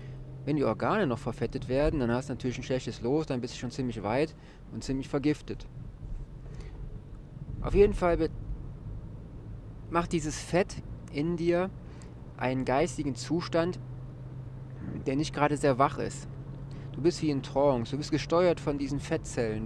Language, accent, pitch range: German, German, 125-145 Hz